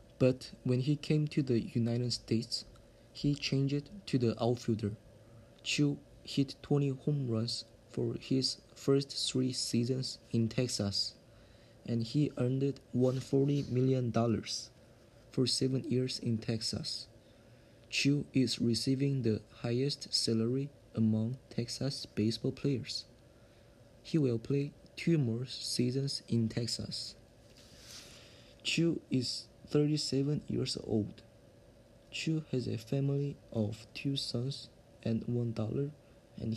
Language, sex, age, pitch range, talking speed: English, male, 20-39, 115-135 Hz, 115 wpm